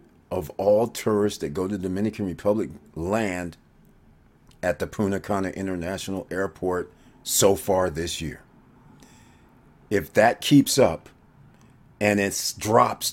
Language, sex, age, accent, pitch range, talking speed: English, male, 50-69, American, 90-110 Hz, 120 wpm